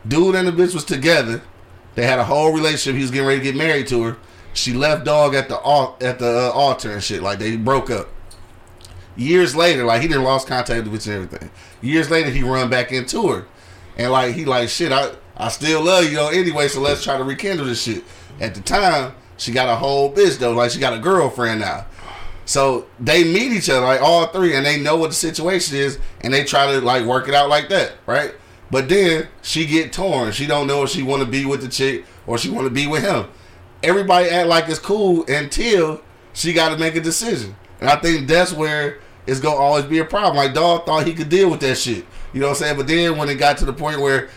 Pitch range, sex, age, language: 120-160 Hz, male, 30-49, English